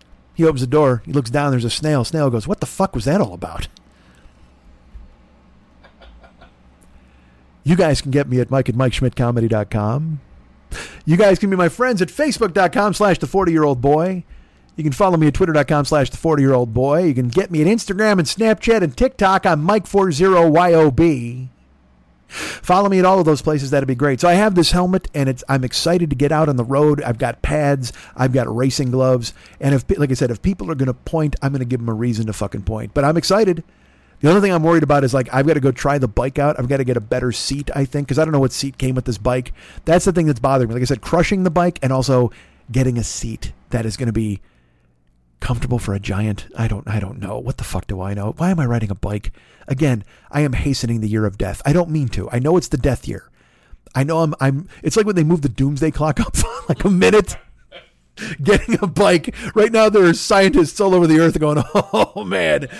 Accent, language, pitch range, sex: American, English, 120-170 Hz, male